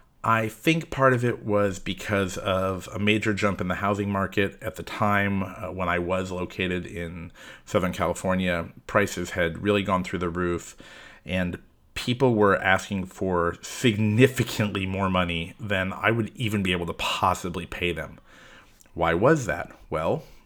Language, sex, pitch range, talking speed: English, male, 95-115 Hz, 160 wpm